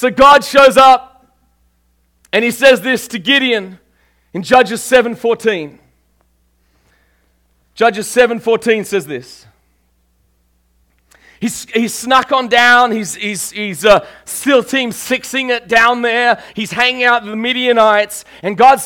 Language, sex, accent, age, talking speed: English, male, Australian, 30-49, 125 wpm